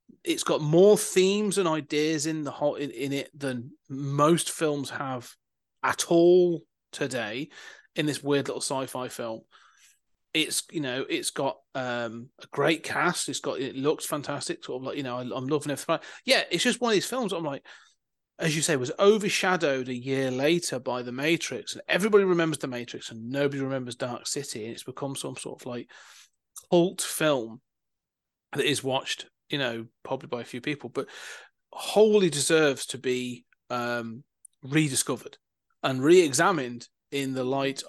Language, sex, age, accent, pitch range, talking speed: English, male, 30-49, British, 125-160 Hz, 175 wpm